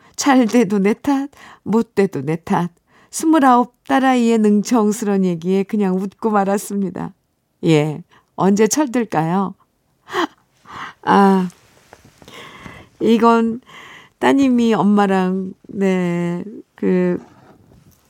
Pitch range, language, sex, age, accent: 190-245 Hz, Korean, female, 50-69, native